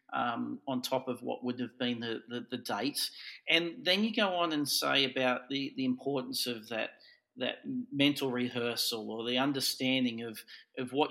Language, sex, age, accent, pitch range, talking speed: English, male, 40-59, Australian, 120-140 Hz, 185 wpm